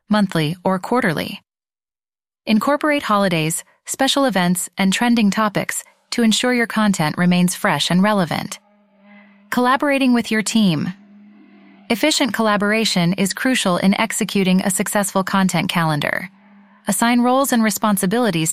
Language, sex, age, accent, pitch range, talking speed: English, female, 30-49, American, 180-230 Hz, 115 wpm